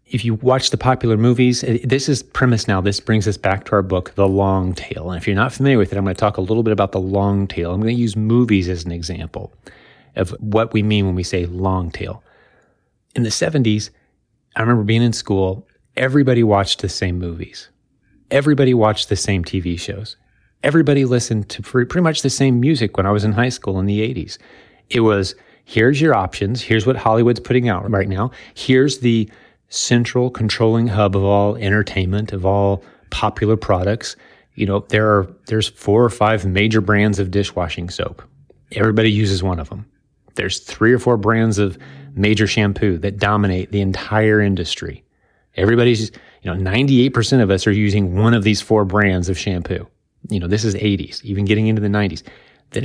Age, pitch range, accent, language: 30-49, 100-120 Hz, American, English